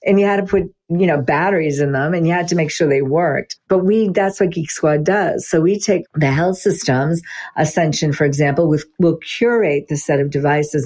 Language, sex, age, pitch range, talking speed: English, female, 50-69, 150-185 Hz, 220 wpm